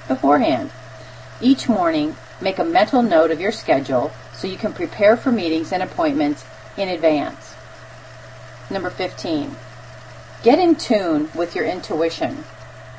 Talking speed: 130 wpm